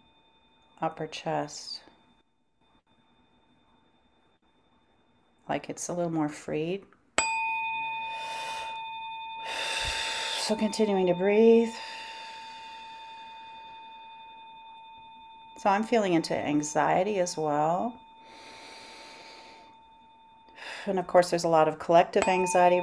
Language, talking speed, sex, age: English, 75 wpm, female, 40-59